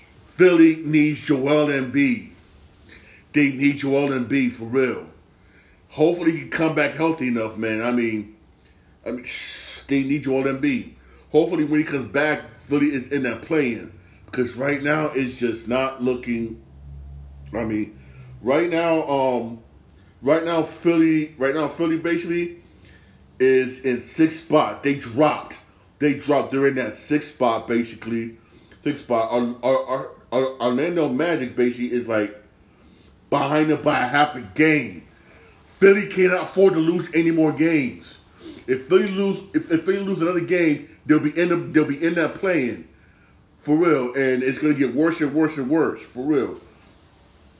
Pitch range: 115-155 Hz